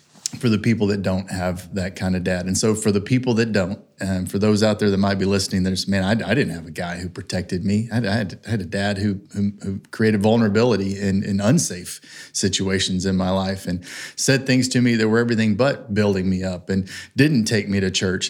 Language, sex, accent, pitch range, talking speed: English, male, American, 95-110 Hz, 235 wpm